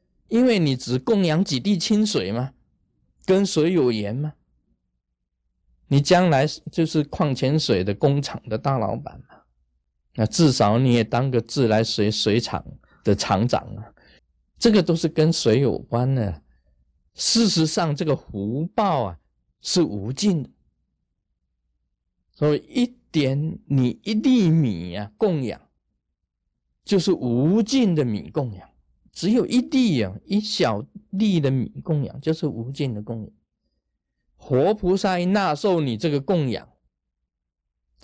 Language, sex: Chinese, male